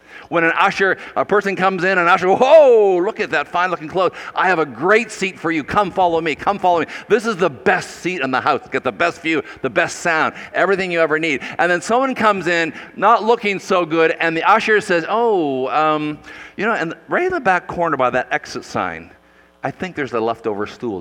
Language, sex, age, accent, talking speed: English, male, 50-69, American, 230 wpm